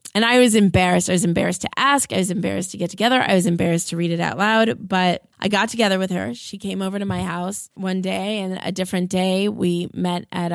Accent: American